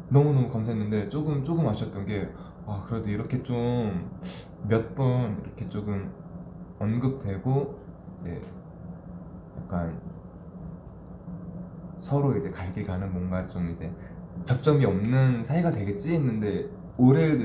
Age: 20-39